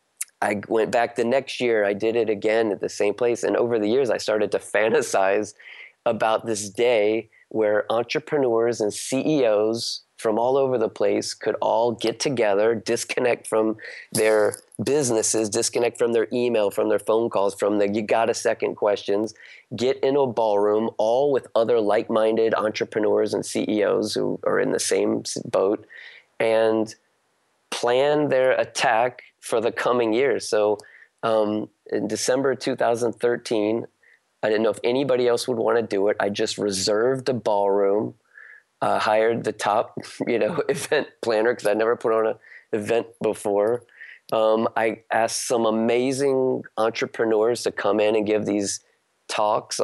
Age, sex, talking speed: 30-49, male, 160 wpm